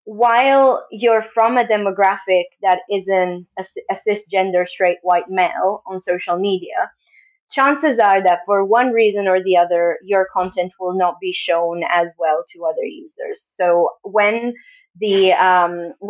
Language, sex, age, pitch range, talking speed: English, female, 20-39, 180-235 Hz, 145 wpm